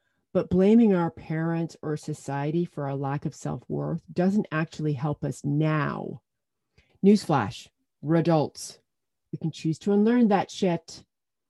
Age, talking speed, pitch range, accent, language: 40-59, 135 wpm, 145-195 Hz, American, English